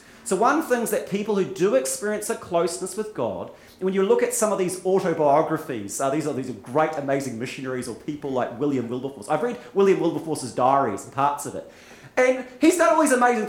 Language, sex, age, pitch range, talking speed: English, male, 30-49, 145-215 Hz, 225 wpm